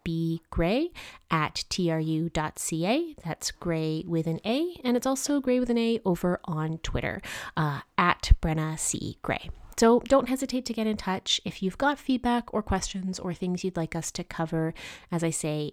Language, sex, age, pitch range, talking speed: English, female, 30-49, 170-245 Hz, 180 wpm